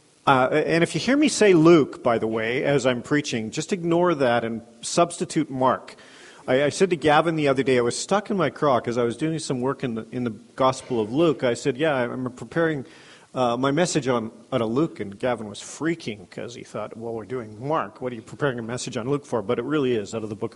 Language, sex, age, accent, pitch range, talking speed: English, male, 40-59, American, 130-200 Hz, 255 wpm